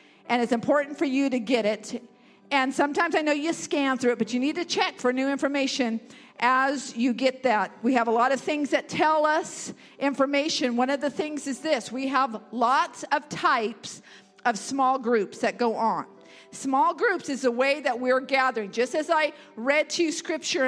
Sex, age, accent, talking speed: female, 50-69, American, 205 wpm